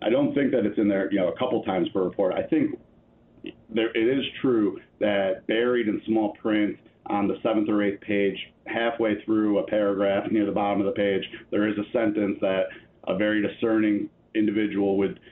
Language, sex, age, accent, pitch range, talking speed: English, male, 40-59, American, 100-125 Hz, 200 wpm